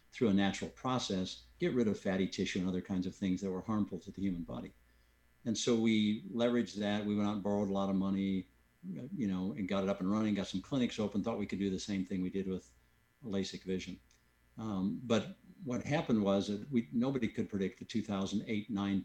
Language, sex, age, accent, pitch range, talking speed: English, male, 60-79, American, 90-105 Hz, 220 wpm